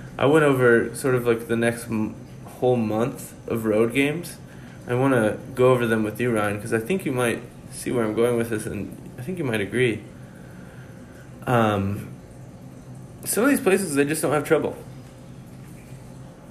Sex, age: male, 20-39